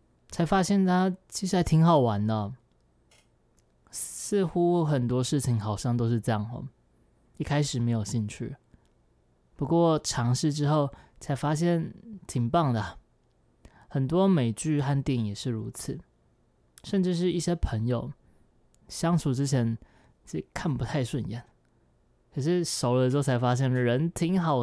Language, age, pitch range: Chinese, 20-39, 110-150 Hz